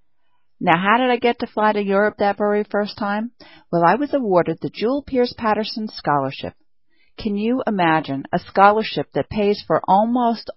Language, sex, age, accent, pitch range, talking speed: English, female, 40-59, American, 160-220 Hz, 175 wpm